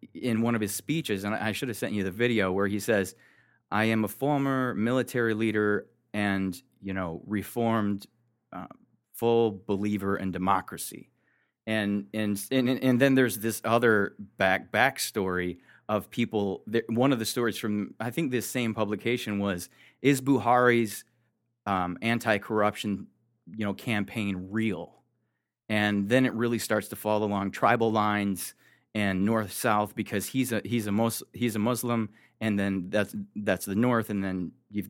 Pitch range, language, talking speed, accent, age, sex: 100-120 Hz, English, 160 wpm, American, 30-49, male